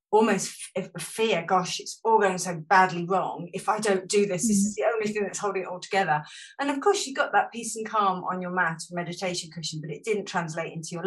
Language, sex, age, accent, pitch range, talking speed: English, female, 40-59, British, 195-300 Hz, 240 wpm